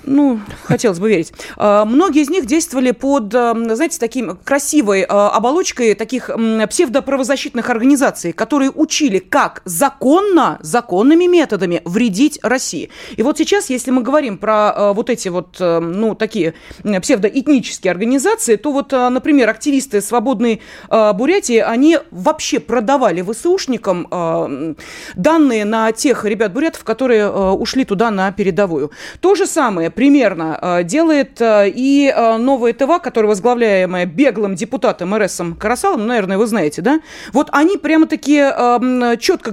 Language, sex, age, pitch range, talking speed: Russian, female, 30-49, 210-280 Hz, 125 wpm